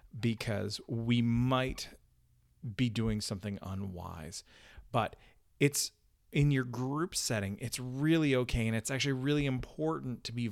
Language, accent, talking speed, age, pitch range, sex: English, American, 130 wpm, 40-59, 105-135 Hz, male